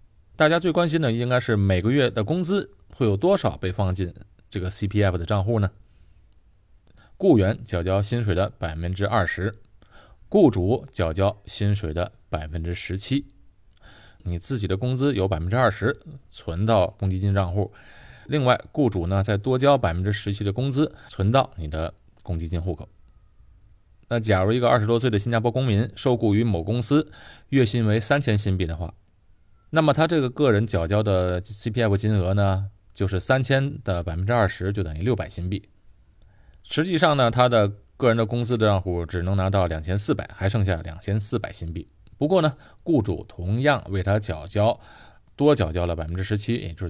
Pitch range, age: 95-120 Hz, 20-39